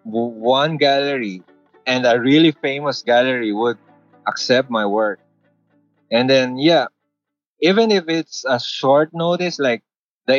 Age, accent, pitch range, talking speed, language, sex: 20-39, Filipino, 120-155 Hz, 125 wpm, English, male